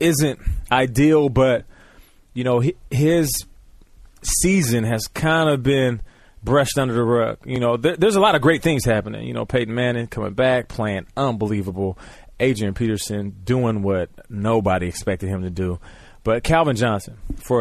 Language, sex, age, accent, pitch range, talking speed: English, male, 30-49, American, 105-130 Hz, 155 wpm